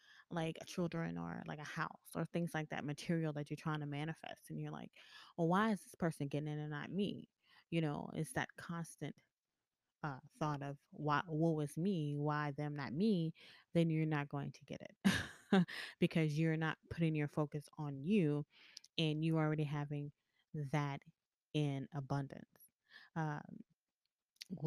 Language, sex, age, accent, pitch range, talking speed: English, female, 20-39, American, 145-165 Hz, 170 wpm